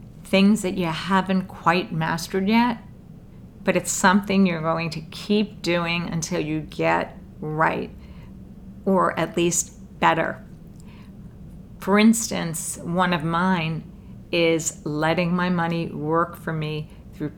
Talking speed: 125 wpm